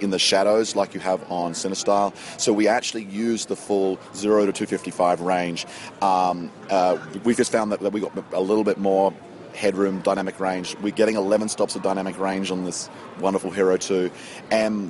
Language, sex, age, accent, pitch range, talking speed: English, male, 30-49, Australian, 95-110 Hz, 195 wpm